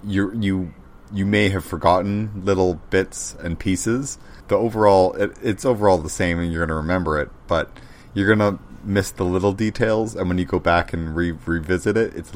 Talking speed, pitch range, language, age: 200 wpm, 85-100 Hz, English, 30-49